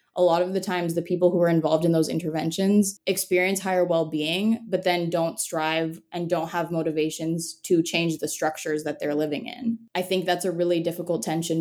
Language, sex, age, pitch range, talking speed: English, female, 20-39, 155-180 Hz, 200 wpm